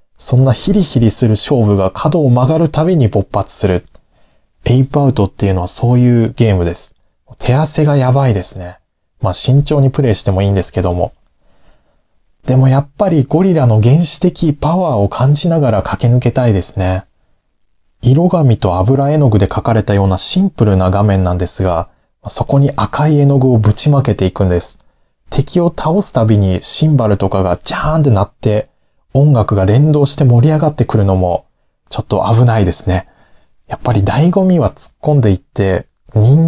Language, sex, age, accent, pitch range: Japanese, male, 20-39, native, 100-150 Hz